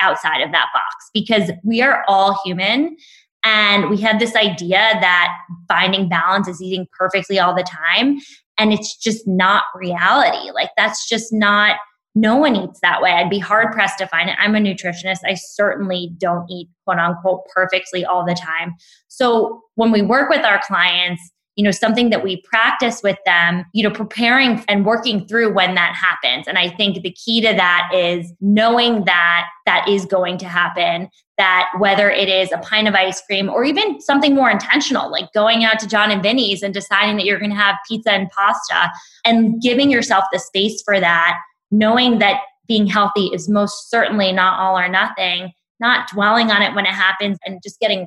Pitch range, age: 185-220 Hz, 20-39